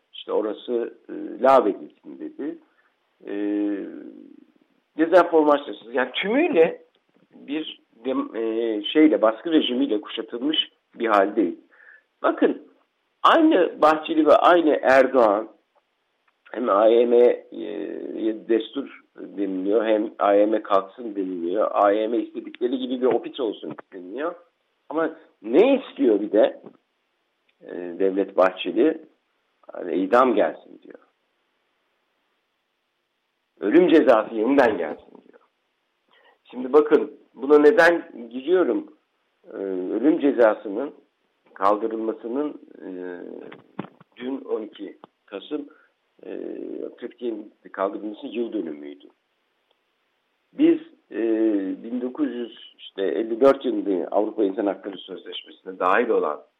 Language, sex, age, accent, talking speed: Turkish, male, 60-79, native, 85 wpm